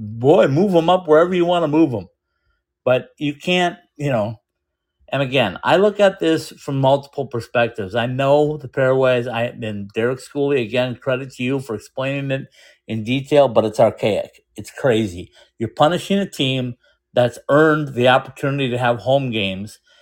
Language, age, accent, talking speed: English, 50-69, American, 175 wpm